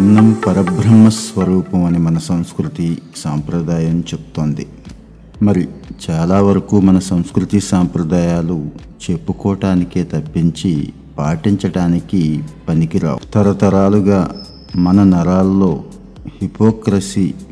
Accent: native